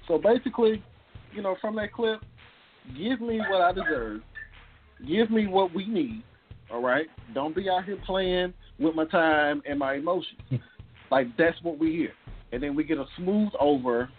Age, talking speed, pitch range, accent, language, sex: 40-59, 180 wpm, 120-160 Hz, American, English, male